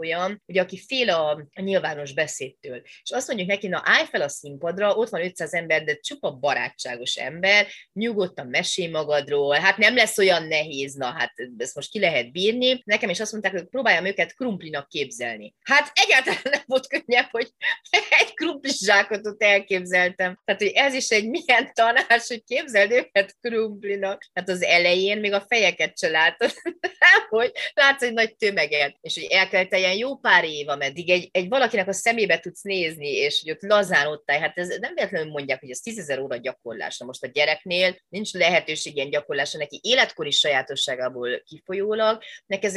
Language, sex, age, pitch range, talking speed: Hungarian, female, 30-49, 155-220 Hz, 170 wpm